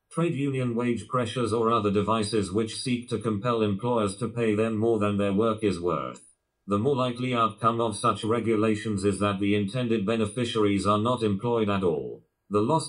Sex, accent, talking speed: male, British, 185 wpm